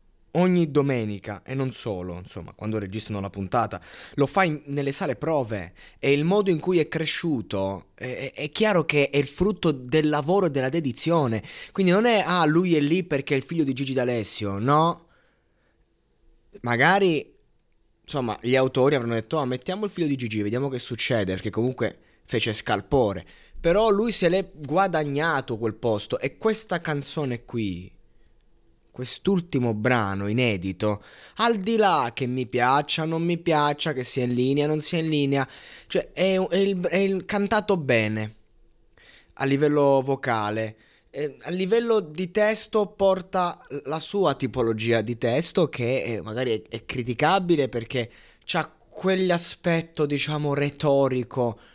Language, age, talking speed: Italian, 20-39, 155 wpm